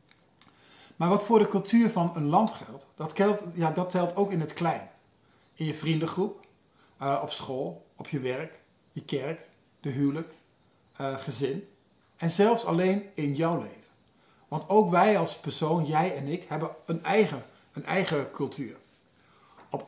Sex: male